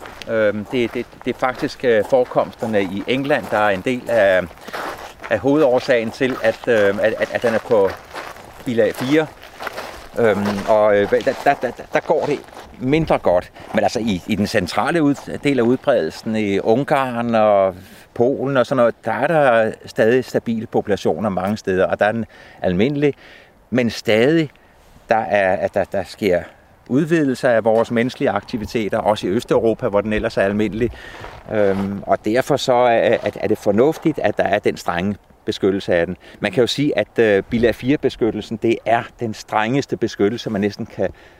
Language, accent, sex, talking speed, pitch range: Danish, native, male, 170 wpm, 100-130 Hz